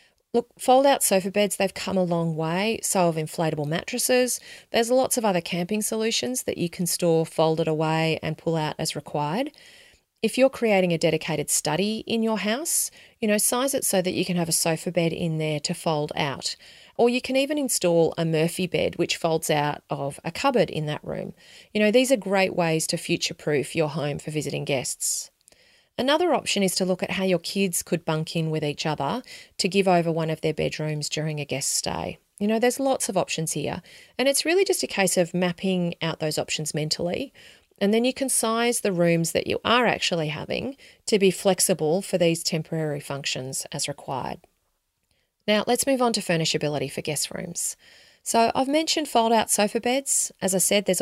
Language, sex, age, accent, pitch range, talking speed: English, female, 30-49, Australian, 160-220 Hz, 200 wpm